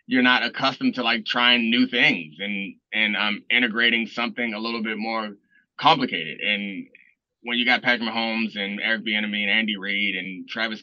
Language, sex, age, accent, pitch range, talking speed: English, male, 20-39, American, 115-140 Hz, 185 wpm